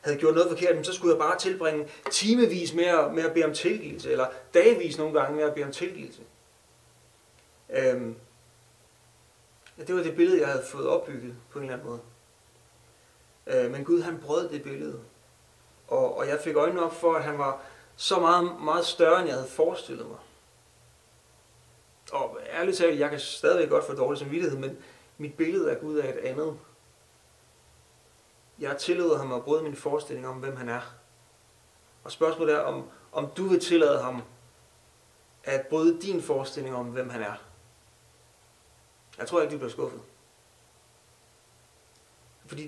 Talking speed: 160 wpm